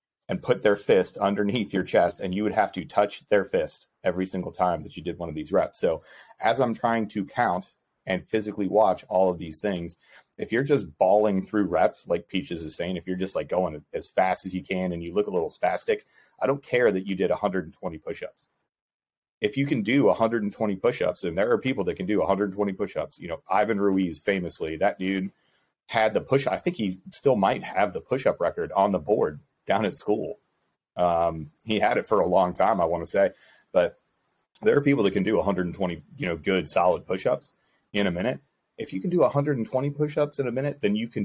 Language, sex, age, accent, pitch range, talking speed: English, male, 30-49, American, 90-110 Hz, 220 wpm